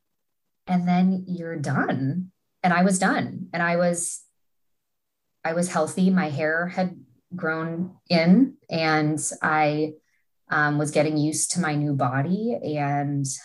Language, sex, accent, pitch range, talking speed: English, female, American, 135-160 Hz, 135 wpm